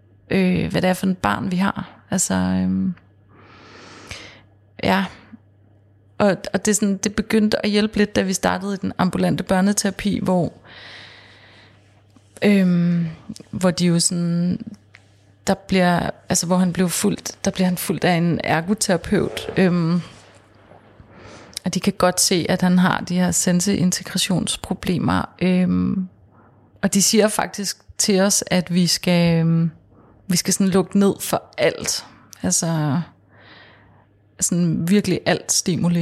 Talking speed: 140 wpm